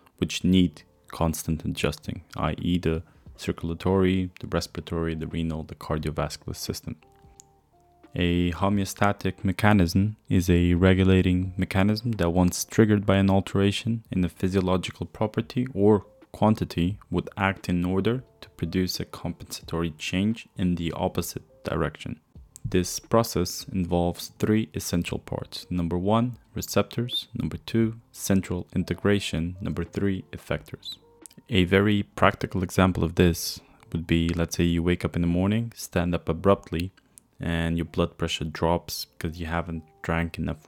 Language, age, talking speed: English, 20-39, 135 wpm